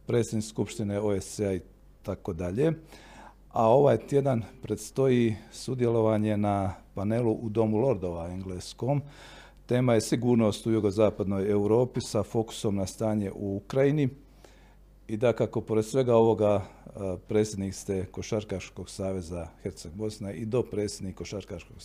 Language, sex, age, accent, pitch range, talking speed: Croatian, male, 50-69, native, 95-115 Hz, 120 wpm